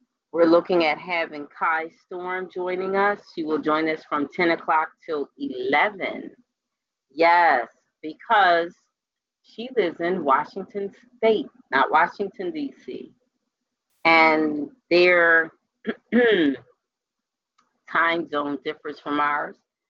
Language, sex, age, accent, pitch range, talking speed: English, female, 30-49, American, 155-225 Hz, 105 wpm